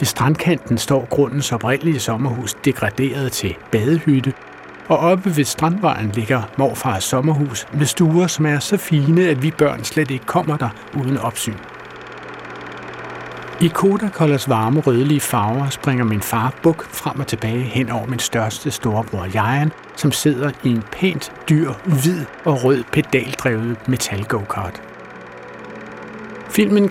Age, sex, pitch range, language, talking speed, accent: 60-79, male, 115-155 Hz, Danish, 140 wpm, native